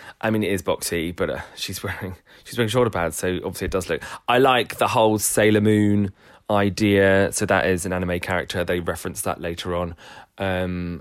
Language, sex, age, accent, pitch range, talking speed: English, male, 30-49, British, 95-140 Hz, 200 wpm